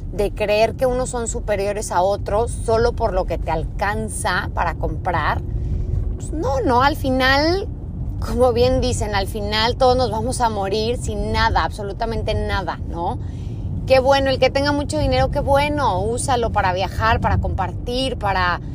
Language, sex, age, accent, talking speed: Spanish, female, 30-49, Mexican, 165 wpm